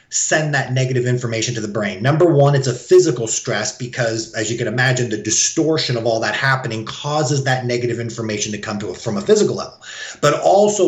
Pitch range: 120-155 Hz